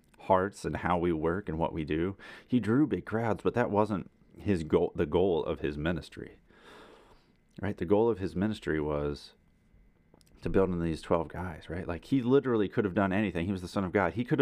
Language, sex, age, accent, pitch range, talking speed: English, male, 30-49, American, 85-120 Hz, 215 wpm